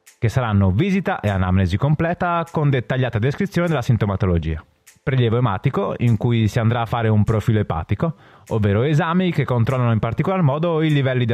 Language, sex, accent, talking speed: Italian, male, native, 170 wpm